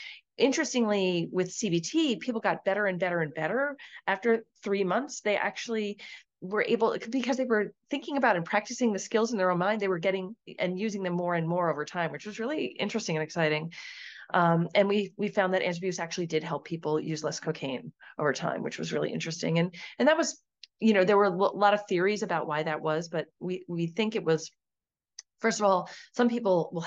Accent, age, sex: American, 30-49, female